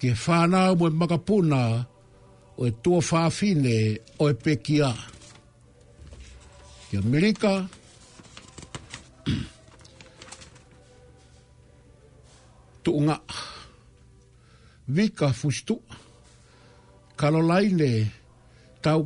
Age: 60-79